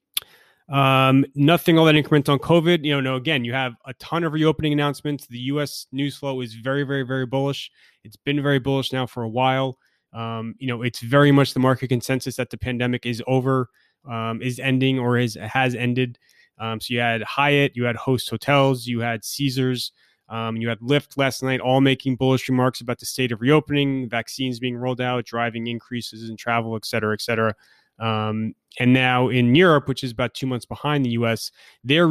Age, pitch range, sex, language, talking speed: 20-39, 115-130 Hz, male, English, 205 wpm